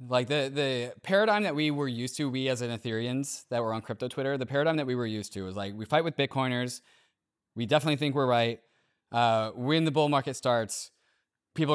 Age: 20-39